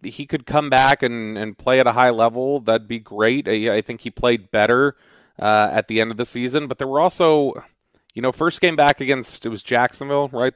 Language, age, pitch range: English, 30-49, 110-135 Hz